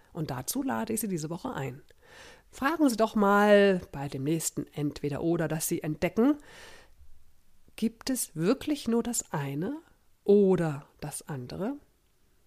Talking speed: 135 wpm